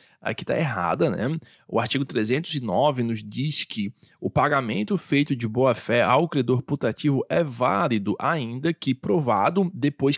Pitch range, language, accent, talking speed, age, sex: 120-150 Hz, Portuguese, Brazilian, 140 wpm, 20-39, male